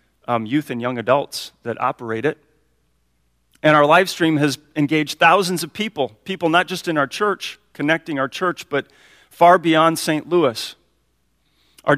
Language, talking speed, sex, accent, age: English, 160 wpm, male, American, 40-59